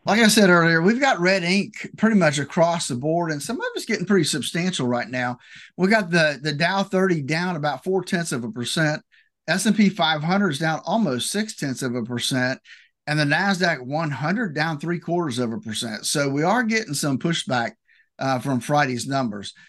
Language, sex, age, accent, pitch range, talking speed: English, male, 50-69, American, 135-195 Hz, 200 wpm